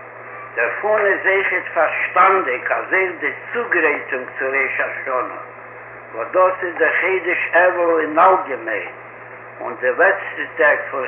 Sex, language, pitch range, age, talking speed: male, Hebrew, 165-190 Hz, 60-79, 90 wpm